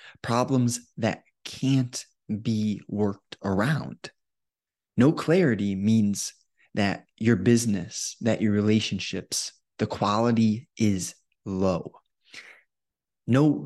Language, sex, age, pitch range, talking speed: English, male, 20-39, 105-125 Hz, 90 wpm